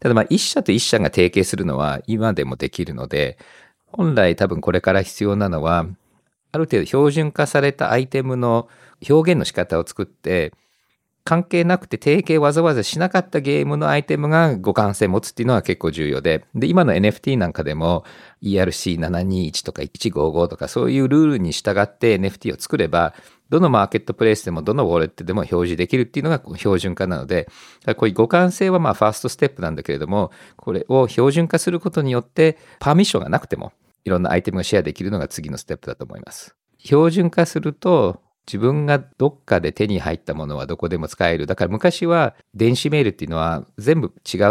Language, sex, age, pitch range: Japanese, male, 50-69, 90-150 Hz